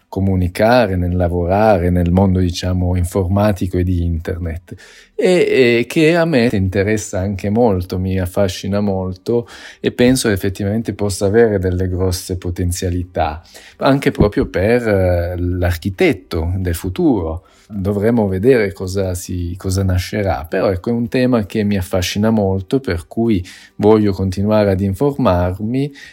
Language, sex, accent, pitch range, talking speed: Italian, male, native, 90-110 Hz, 130 wpm